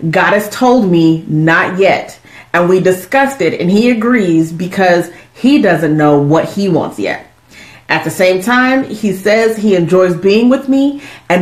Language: English